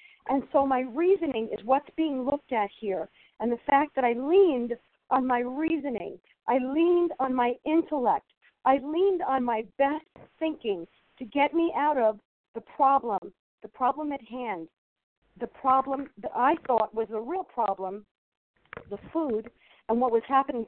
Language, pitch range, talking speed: English, 230-310 Hz, 165 wpm